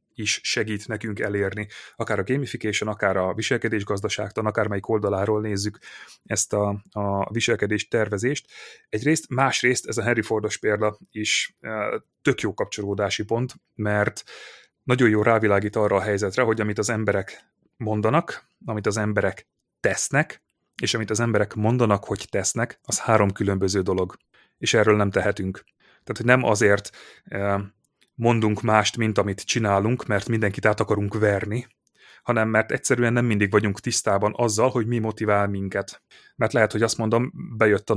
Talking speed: 155 wpm